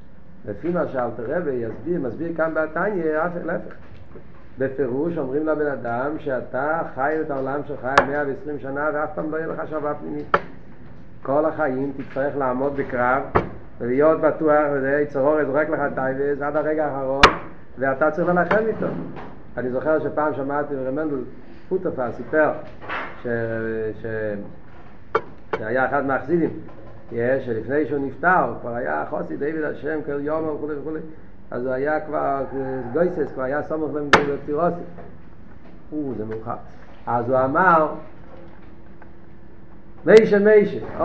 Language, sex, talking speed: Hebrew, male, 130 wpm